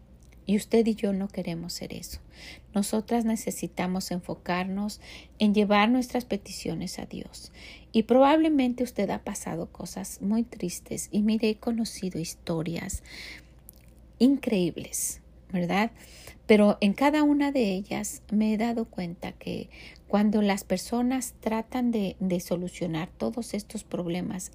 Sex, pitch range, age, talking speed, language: female, 185-230 Hz, 40-59, 130 wpm, Spanish